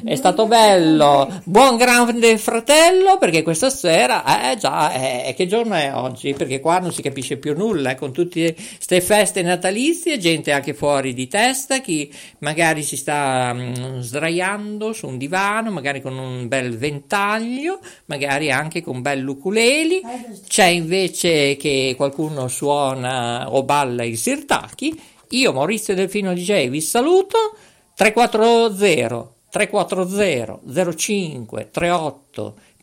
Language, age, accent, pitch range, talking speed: Italian, 50-69, native, 135-220 Hz, 130 wpm